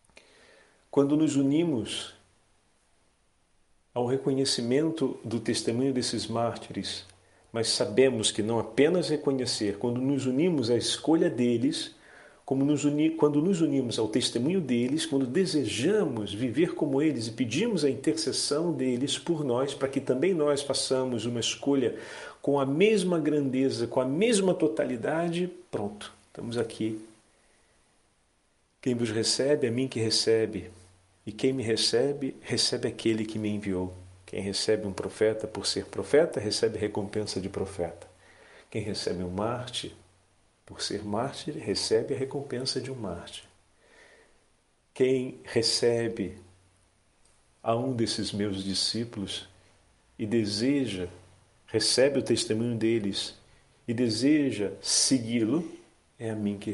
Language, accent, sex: Portuguese, Brazilian, male